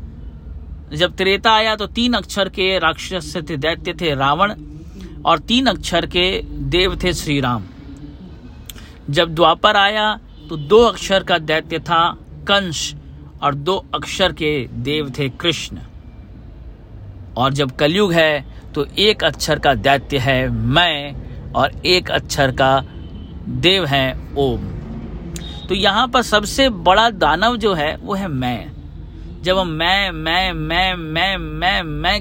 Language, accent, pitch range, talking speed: Hindi, native, 125-180 Hz, 140 wpm